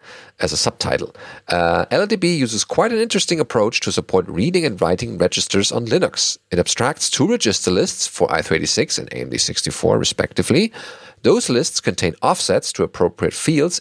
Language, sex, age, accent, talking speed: English, male, 40-59, German, 150 wpm